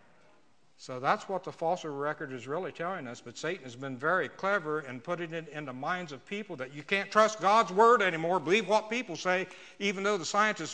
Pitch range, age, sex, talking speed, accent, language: 145-190 Hz, 60-79, male, 220 wpm, American, English